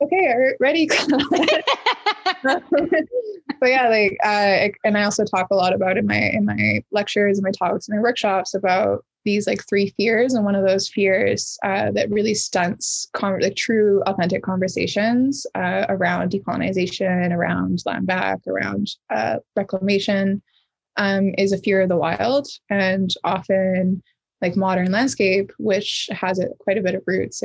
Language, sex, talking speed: English, female, 155 wpm